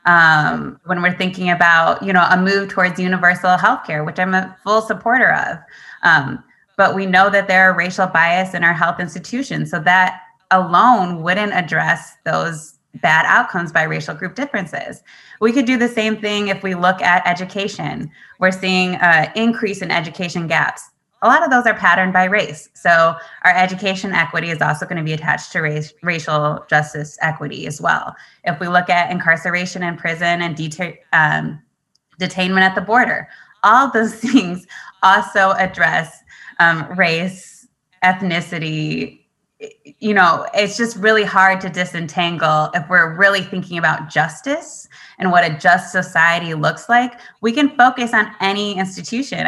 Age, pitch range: 20-39, 170-205 Hz